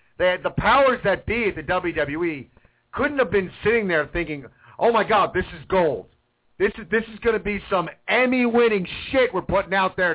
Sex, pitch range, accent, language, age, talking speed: male, 140-195 Hz, American, English, 50-69, 205 wpm